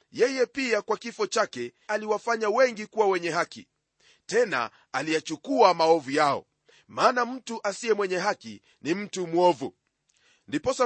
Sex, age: male, 40-59